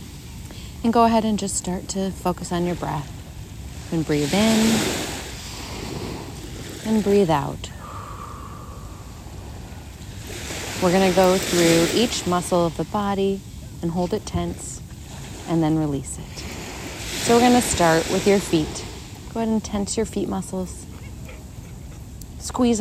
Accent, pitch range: American, 140-190 Hz